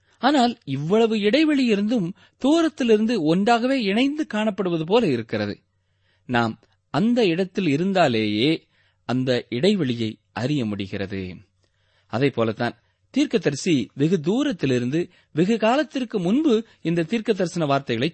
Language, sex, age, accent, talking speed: Tamil, male, 20-39, native, 95 wpm